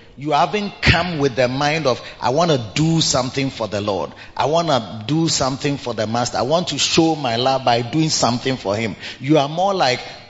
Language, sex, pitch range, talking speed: English, male, 115-170 Hz, 220 wpm